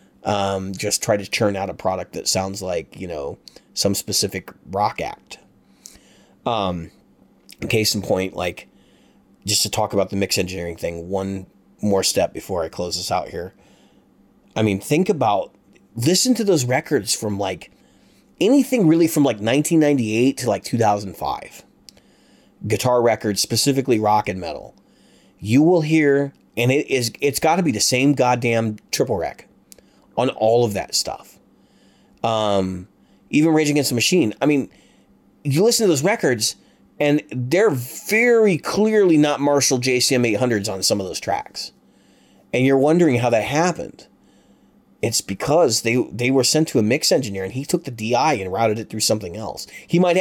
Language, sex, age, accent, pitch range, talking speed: English, male, 30-49, American, 100-145 Hz, 165 wpm